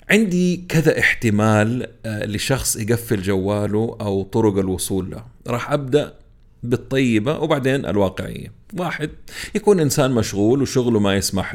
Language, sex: Arabic, male